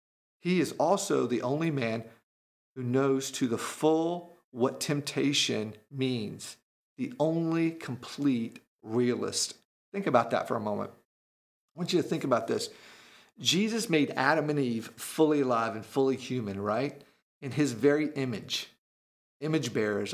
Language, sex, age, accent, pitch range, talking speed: English, male, 50-69, American, 125-160 Hz, 145 wpm